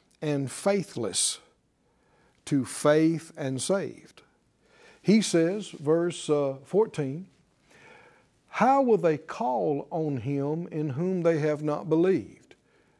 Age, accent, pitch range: 60-79, American, 135-175 Hz